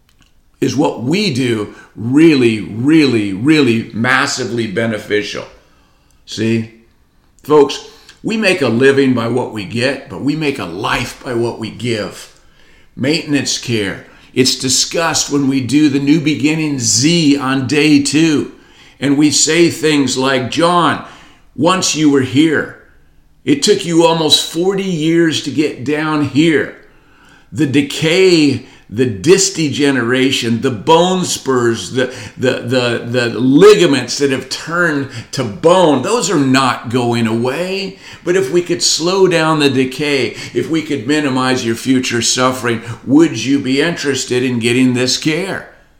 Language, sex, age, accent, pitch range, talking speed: English, male, 50-69, American, 120-150 Hz, 140 wpm